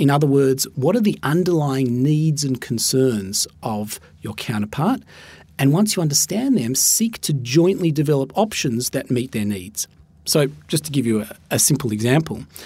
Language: English